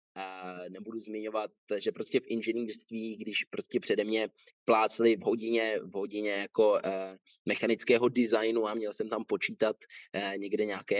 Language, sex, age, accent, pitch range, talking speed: Czech, male, 20-39, native, 105-135 Hz, 155 wpm